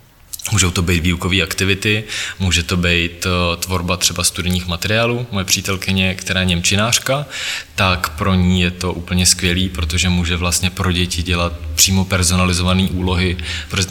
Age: 20-39